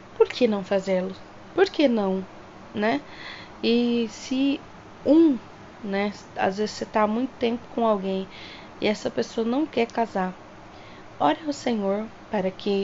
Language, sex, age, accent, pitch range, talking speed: Portuguese, female, 20-39, Brazilian, 195-230 Hz, 150 wpm